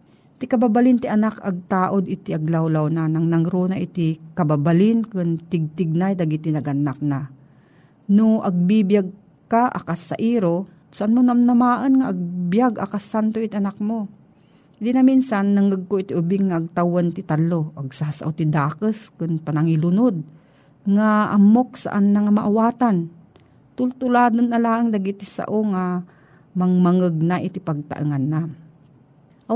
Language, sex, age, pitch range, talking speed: Filipino, female, 40-59, 165-210 Hz, 135 wpm